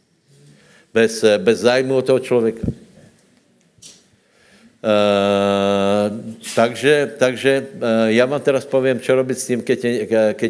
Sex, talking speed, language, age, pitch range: male, 115 wpm, Slovak, 70-89, 100-120 Hz